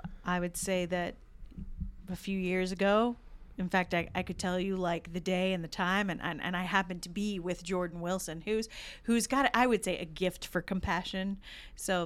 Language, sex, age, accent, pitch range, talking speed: English, female, 40-59, American, 175-205 Hz, 210 wpm